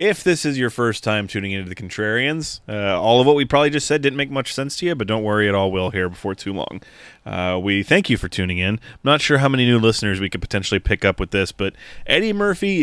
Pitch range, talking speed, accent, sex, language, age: 95-120 Hz, 275 wpm, American, male, English, 30-49